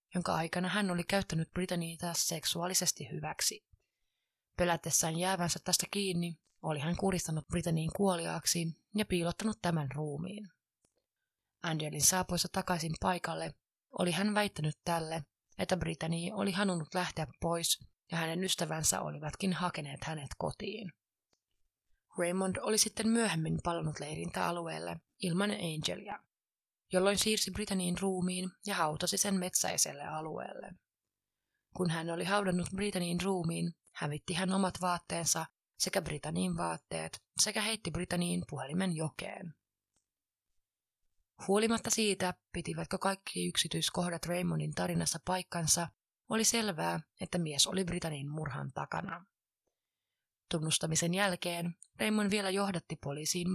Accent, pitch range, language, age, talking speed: native, 155-185 Hz, Finnish, 30-49, 110 wpm